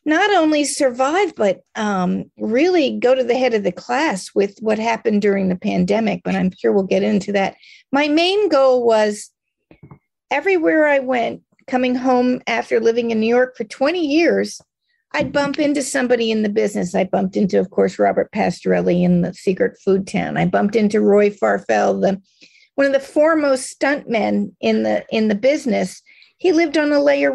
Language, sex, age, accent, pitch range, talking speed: English, female, 40-59, American, 210-280 Hz, 180 wpm